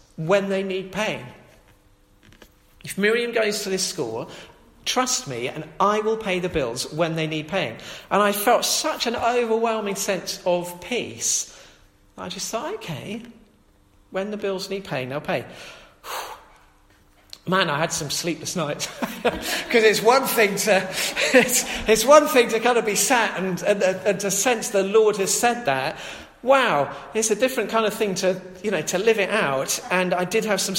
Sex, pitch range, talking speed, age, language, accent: male, 165-220 Hz, 175 wpm, 40-59, English, British